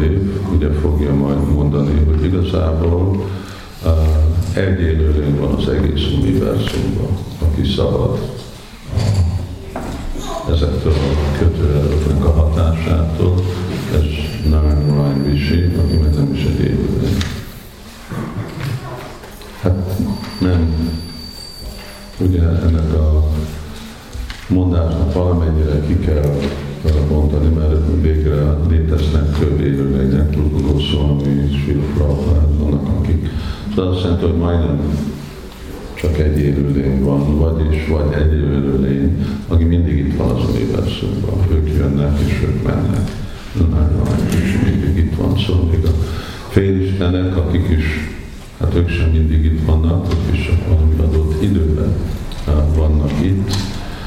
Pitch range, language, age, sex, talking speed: 75-90 Hz, Hungarian, 50-69, male, 110 wpm